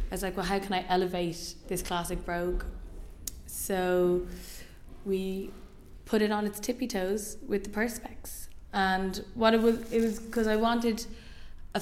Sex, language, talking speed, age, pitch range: female, English, 160 wpm, 20-39, 175-205 Hz